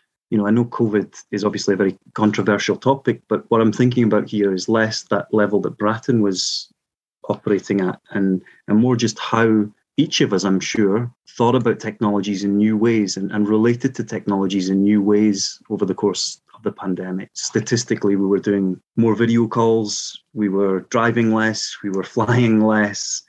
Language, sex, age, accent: English, male, 30-49, British